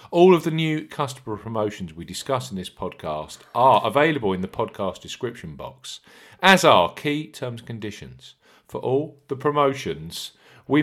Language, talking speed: English, 160 wpm